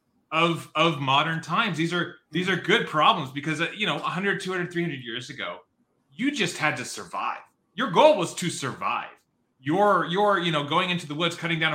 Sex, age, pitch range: male, 30-49, 130-175 Hz